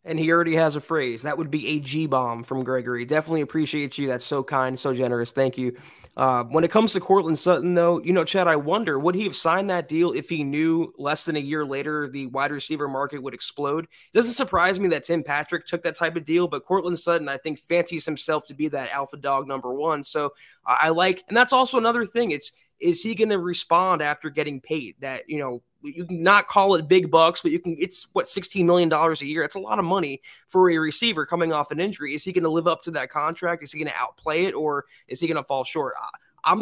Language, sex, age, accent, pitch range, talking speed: English, male, 20-39, American, 145-180 Hz, 250 wpm